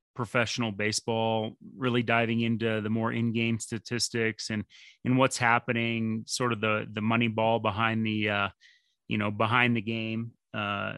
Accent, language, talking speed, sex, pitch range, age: American, English, 155 wpm, male, 110-125 Hz, 30-49